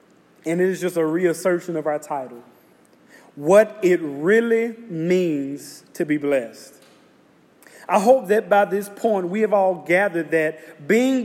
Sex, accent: male, American